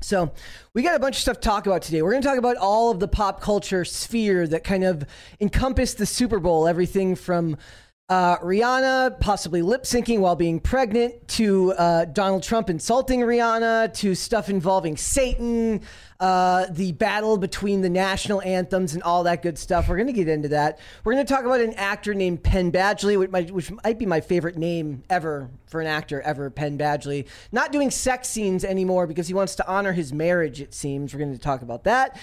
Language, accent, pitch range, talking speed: English, American, 170-225 Hz, 205 wpm